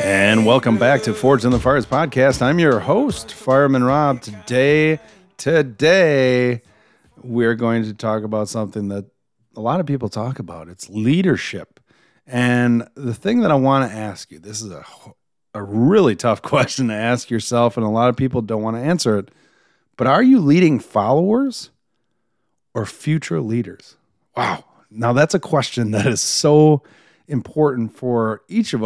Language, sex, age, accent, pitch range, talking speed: English, male, 40-59, American, 115-145 Hz, 165 wpm